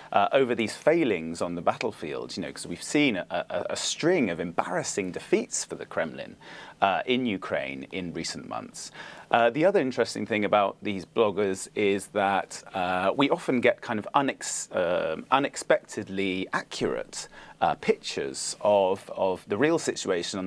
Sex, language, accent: male, English, British